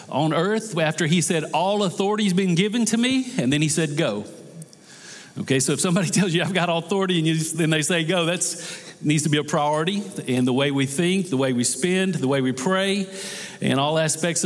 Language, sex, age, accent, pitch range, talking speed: English, male, 50-69, American, 135-180 Hz, 220 wpm